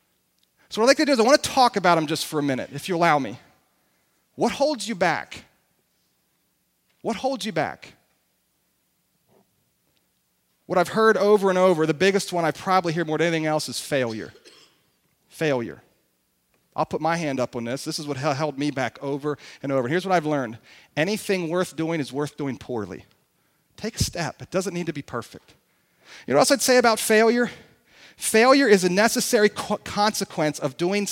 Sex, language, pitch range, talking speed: male, English, 150-230 Hz, 190 wpm